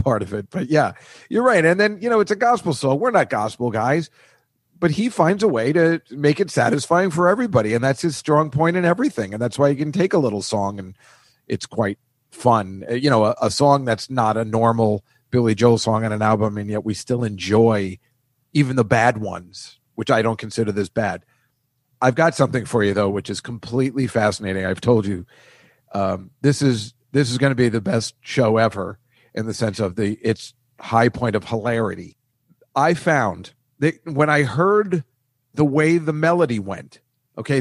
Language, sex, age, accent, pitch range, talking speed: English, male, 40-59, American, 110-150 Hz, 205 wpm